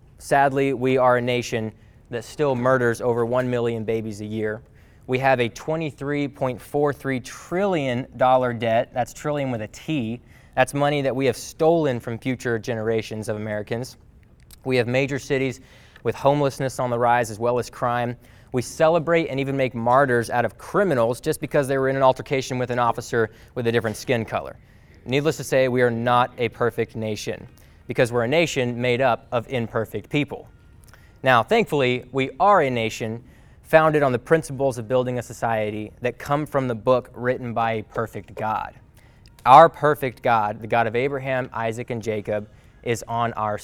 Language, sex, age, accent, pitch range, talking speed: English, male, 20-39, American, 115-135 Hz, 175 wpm